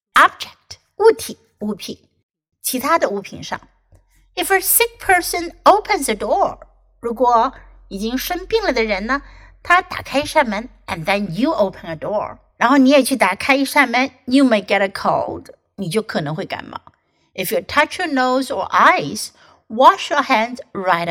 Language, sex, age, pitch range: Chinese, female, 60-79, 210-295 Hz